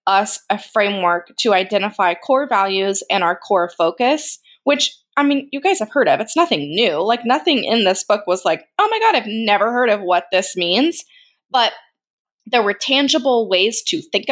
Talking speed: 195 wpm